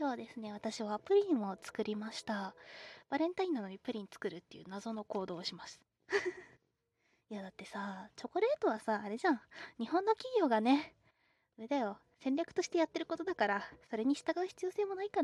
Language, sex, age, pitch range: Japanese, female, 20-39, 210-295 Hz